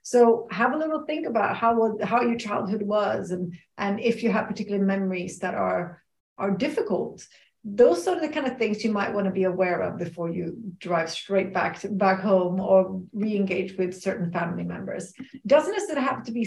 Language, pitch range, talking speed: English, 190-240 Hz, 195 wpm